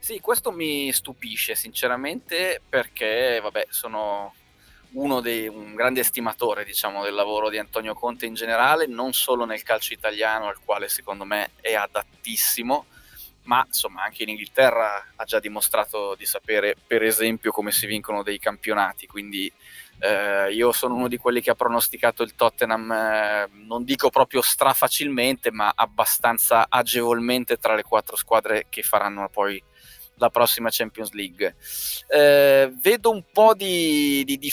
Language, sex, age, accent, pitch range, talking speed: Italian, male, 20-39, native, 110-140 Hz, 155 wpm